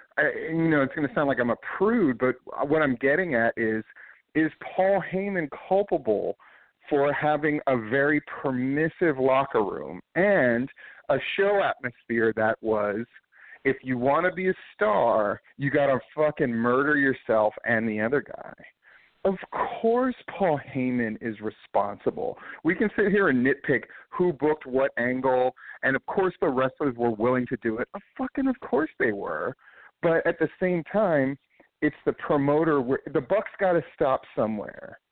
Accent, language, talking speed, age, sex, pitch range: American, English, 160 wpm, 40-59, male, 125-175 Hz